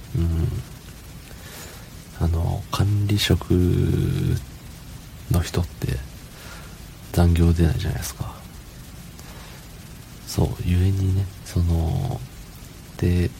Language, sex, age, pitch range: Japanese, male, 40-59, 85-105 Hz